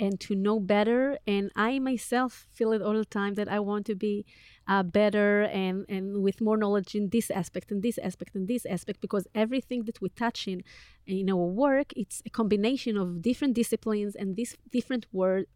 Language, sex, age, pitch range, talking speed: Hebrew, female, 30-49, 190-235 Hz, 205 wpm